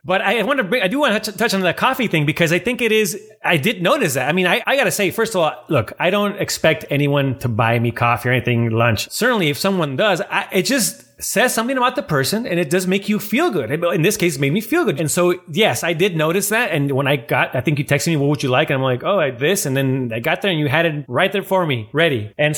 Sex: male